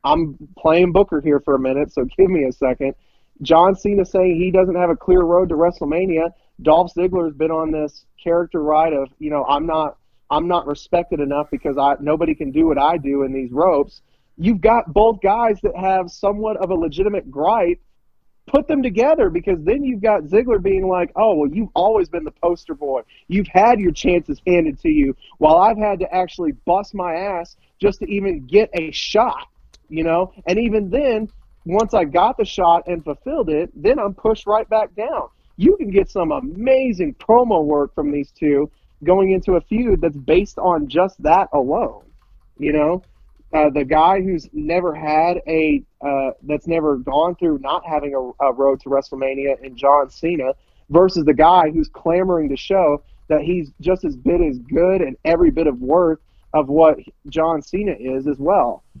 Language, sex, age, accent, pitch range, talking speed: English, male, 30-49, American, 150-195 Hz, 190 wpm